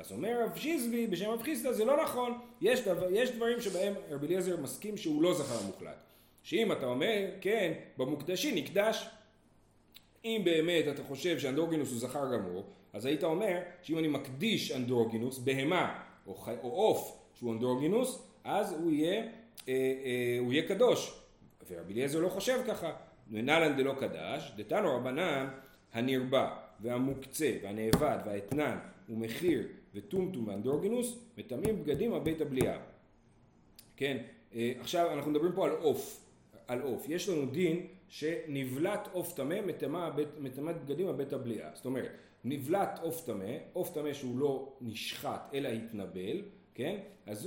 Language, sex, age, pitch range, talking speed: Hebrew, male, 40-59, 130-210 Hz, 140 wpm